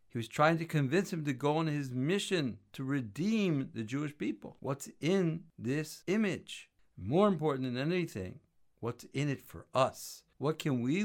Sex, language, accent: male, English, American